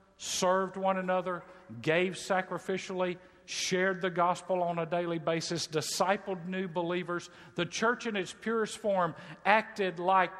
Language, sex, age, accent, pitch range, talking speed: English, male, 50-69, American, 130-185 Hz, 135 wpm